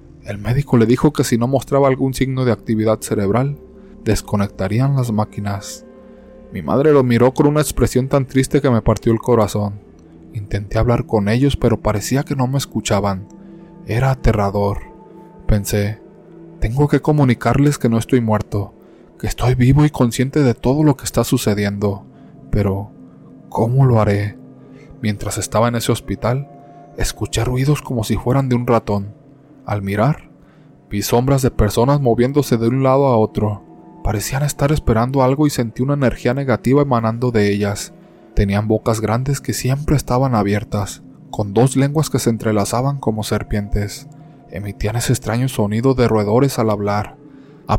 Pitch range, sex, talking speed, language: 105-135 Hz, male, 160 wpm, Spanish